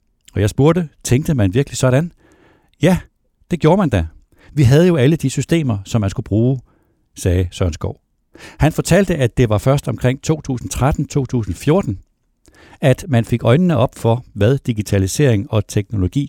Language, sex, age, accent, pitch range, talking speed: Danish, male, 60-79, native, 100-145 Hz, 160 wpm